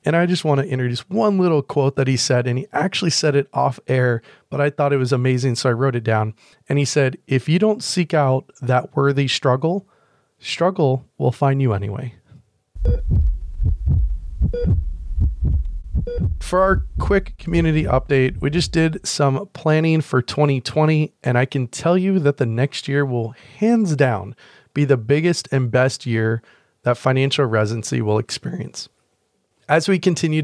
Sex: male